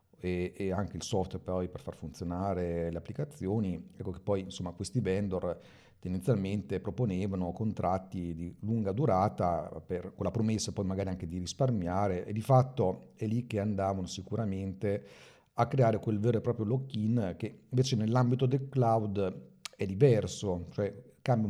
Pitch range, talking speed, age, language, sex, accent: 95-110 Hz, 155 wpm, 40-59, Italian, male, native